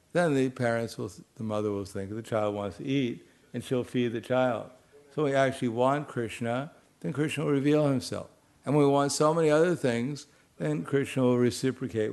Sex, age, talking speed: male, 60-79, 205 wpm